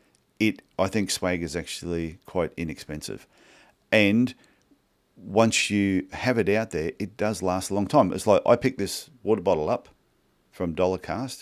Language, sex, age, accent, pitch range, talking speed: English, male, 40-59, Australian, 85-110 Hz, 170 wpm